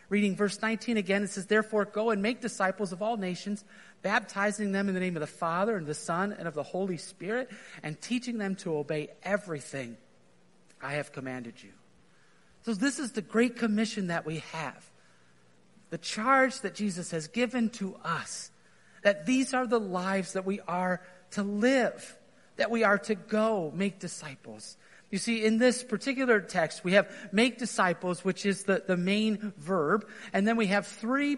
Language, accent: English, American